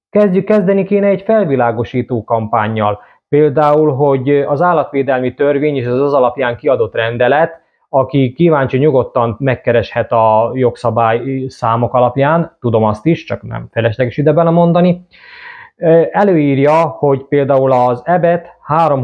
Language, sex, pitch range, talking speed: Hungarian, male, 120-150 Hz, 125 wpm